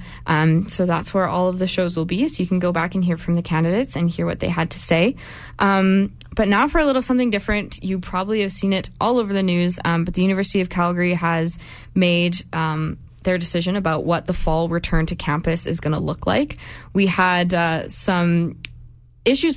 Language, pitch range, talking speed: English, 165-190 Hz, 220 wpm